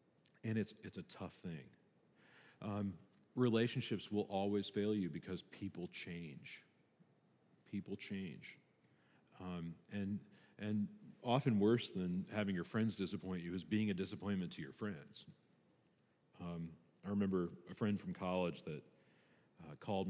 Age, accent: 40-59, American